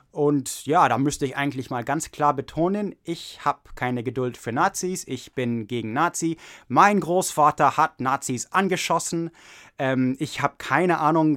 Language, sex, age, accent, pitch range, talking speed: English, male, 20-39, German, 130-160 Hz, 160 wpm